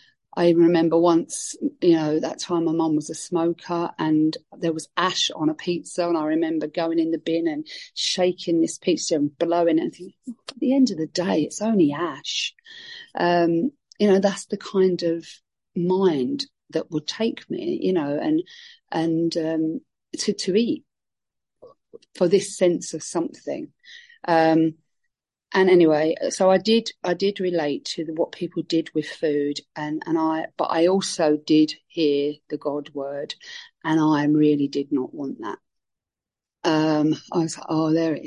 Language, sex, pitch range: English, female, 155-200 Hz